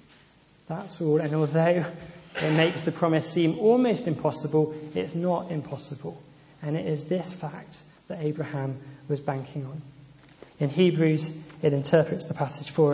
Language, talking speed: English, 145 wpm